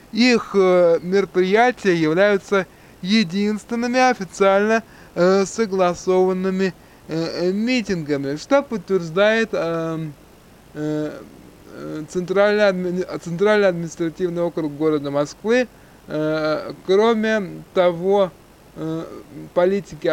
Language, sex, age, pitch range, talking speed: Russian, male, 20-39, 160-205 Hz, 50 wpm